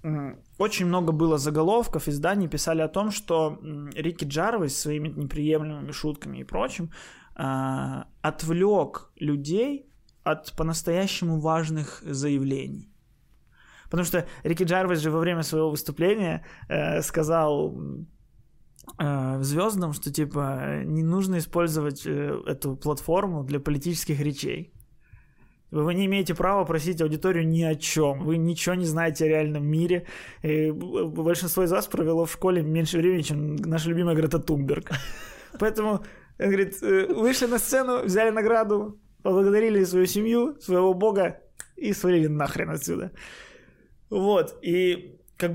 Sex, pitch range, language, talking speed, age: male, 155-190 Hz, Ukrainian, 125 wpm, 20-39